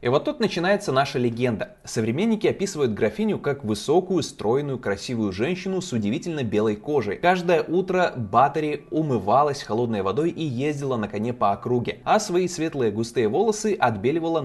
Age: 20-39